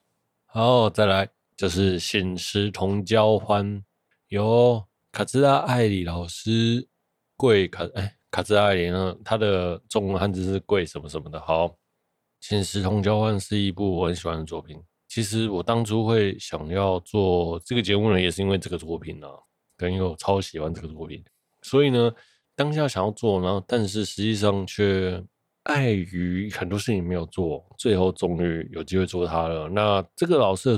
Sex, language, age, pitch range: male, Chinese, 20-39, 90-110 Hz